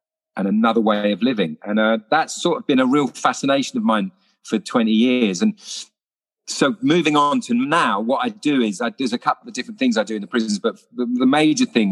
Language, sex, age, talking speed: English, male, 40-59, 225 wpm